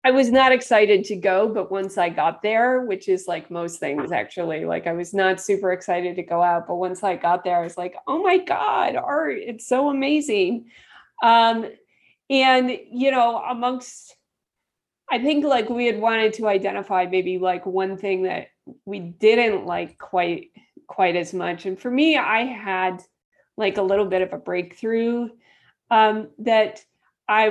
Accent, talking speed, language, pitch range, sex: American, 175 wpm, English, 195-255 Hz, female